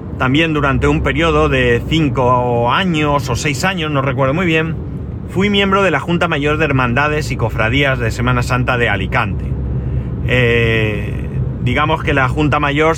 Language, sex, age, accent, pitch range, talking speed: Spanish, male, 40-59, Spanish, 80-130 Hz, 160 wpm